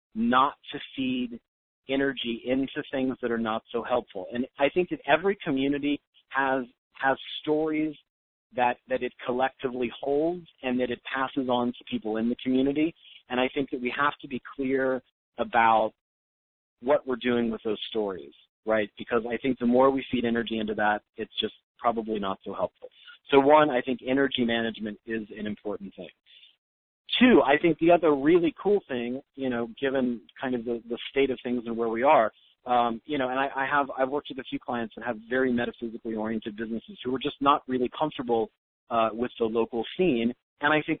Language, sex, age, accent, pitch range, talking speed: English, male, 40-59, American, 115-140 Hz, 195 wpm